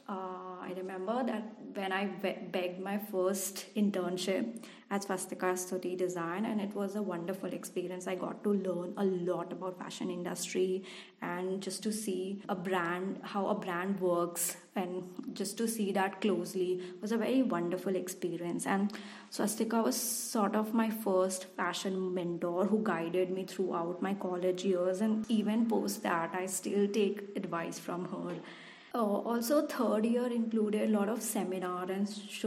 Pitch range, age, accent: 185-215 Hz, 20-39, Indian